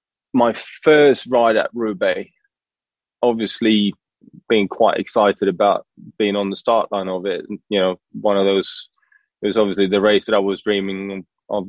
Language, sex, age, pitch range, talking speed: English, male, 20-39, 100-115 Hz, 165 wpm